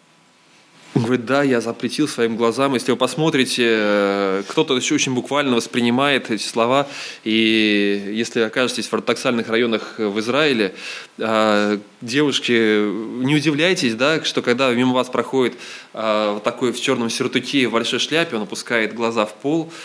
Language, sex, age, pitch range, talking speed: Russian, male, 20-39, 120-165 Hz, 140 wpm